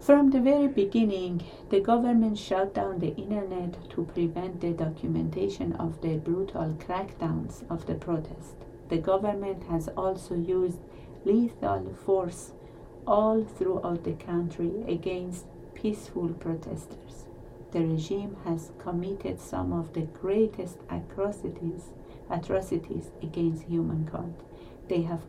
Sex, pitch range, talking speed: female, 165-200 Hz, 115 wpm